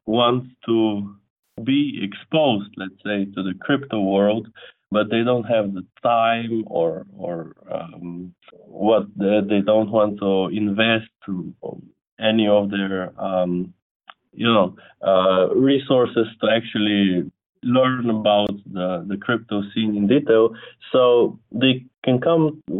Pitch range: 100-130 Hz